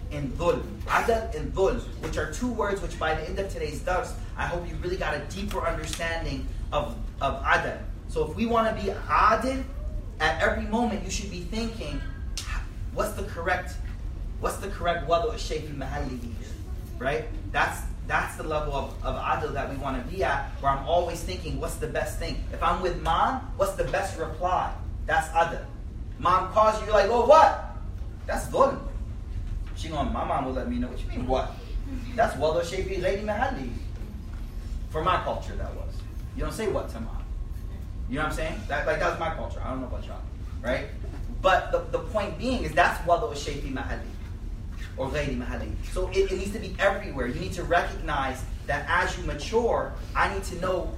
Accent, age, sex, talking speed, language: American, 30-49, male, 190 wpm, English